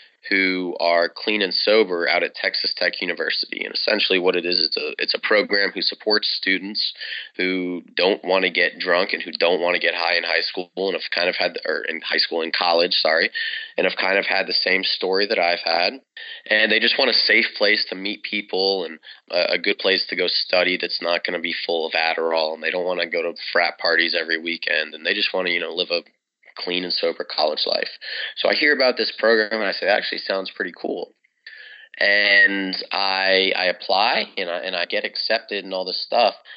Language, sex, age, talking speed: English, male, 20-39, 230 wpm